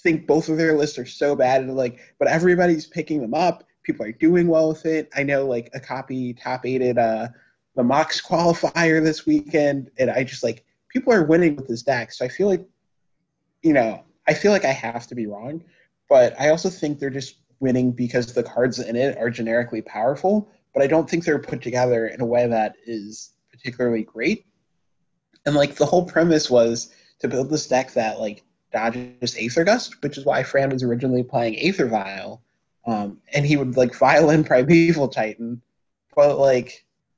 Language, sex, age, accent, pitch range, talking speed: English, male, 20-39, American, 120-155 Hz, 195 wpm